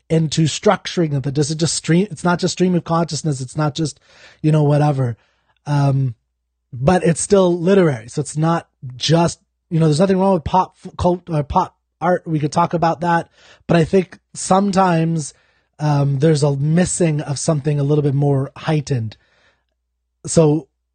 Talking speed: 175 wpm